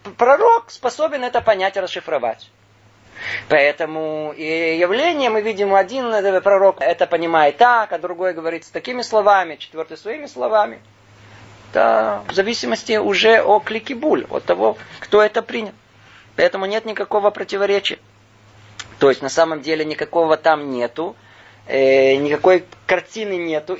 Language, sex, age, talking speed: Russian, male, 20-39, 130 wpm